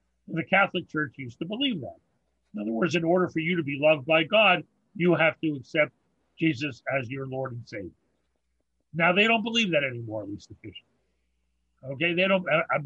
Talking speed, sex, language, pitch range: 195 wpm, male, English, 135-180 Hz